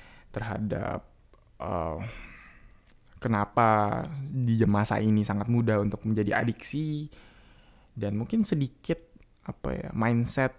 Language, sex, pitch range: Indonesian, male, 105-125 Hz